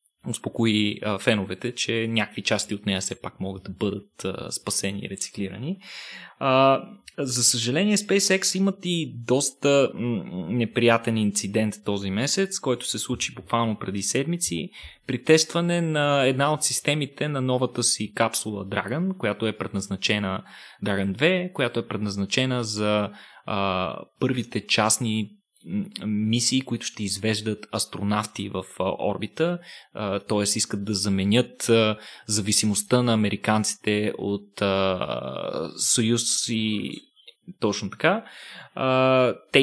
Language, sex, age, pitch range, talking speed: Bulgarian, male, 20-39, 105-135 Hz, 110 wpm